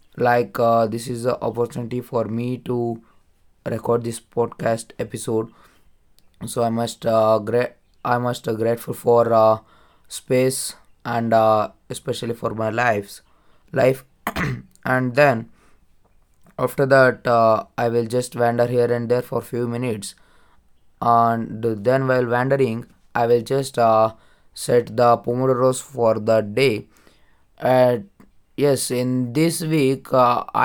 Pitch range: 115-125 Hz